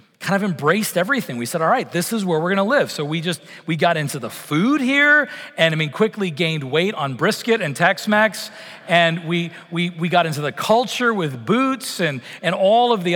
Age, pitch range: 40-59, 170-225 Hz